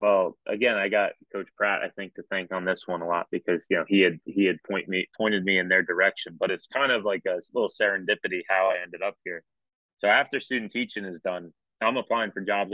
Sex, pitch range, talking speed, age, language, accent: male, 95-110 Hz, 250 wpm, 20-39, English, American